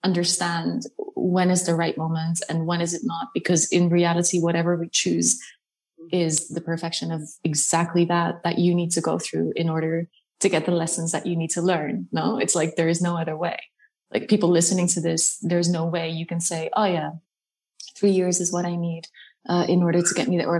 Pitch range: 170-205 Hz